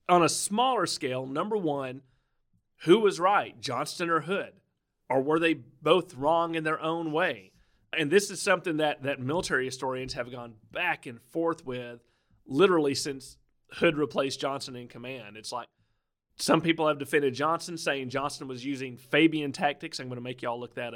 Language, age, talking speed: English, 40-59, 180 wpm